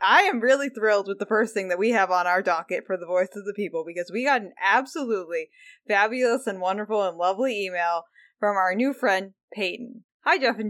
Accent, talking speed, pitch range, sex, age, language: American, 220 wpm, 190-250 Hz, female, 20-39, English